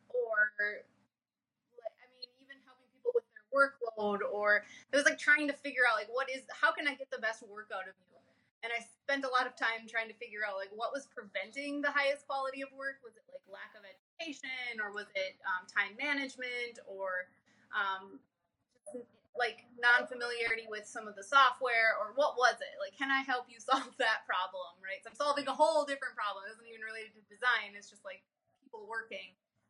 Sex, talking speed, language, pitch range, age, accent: female, 205 wpm, English, 215-270 Hz, 20-39, American